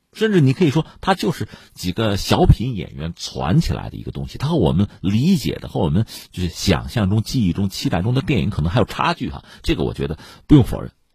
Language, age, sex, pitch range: Chinese, 50-69, male, 90-130 Hz